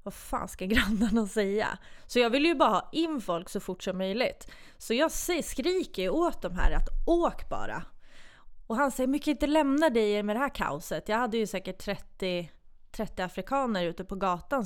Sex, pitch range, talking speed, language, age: female, 185-245 Hz, 195 wpm, Swedish, 20-39